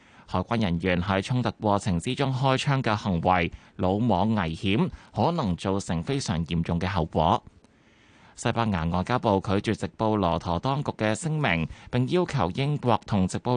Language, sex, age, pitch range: Chinese, male, 20-39, 90-125 Hz